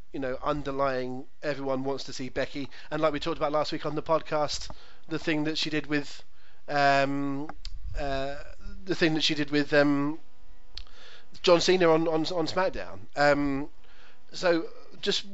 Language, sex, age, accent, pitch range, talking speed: English, male, 30-49, British, 130-155 Hz, 165 wpm